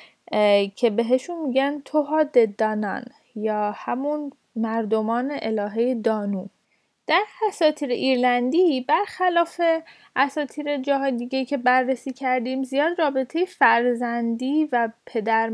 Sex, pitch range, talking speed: female, 225-290 Hz, 95 wpm